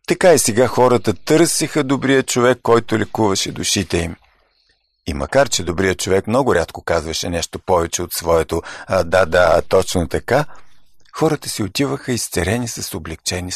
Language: Bulgarian